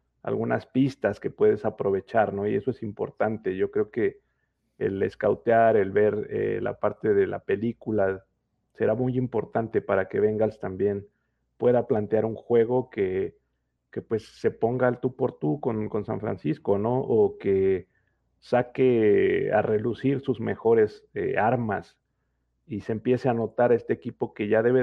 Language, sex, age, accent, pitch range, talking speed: English, male, 40-59, Mexican, 105-130 Hz, 160 wpm